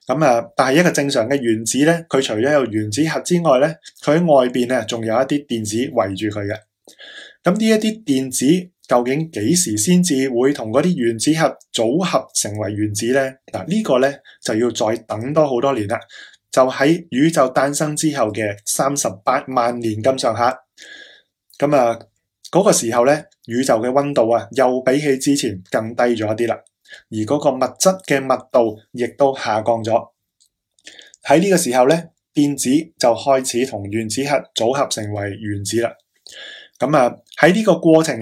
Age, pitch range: 20-39, 110-145 Hz